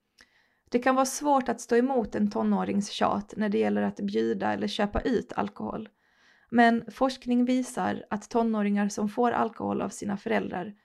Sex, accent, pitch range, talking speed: female, native, 200-240 Hz, 160 wpm